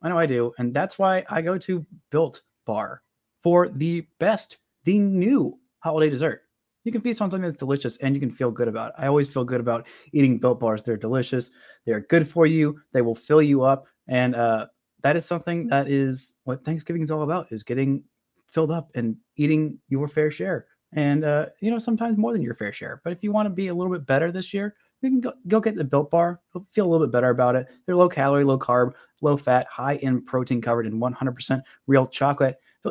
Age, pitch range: 20-39, 120-165 Hz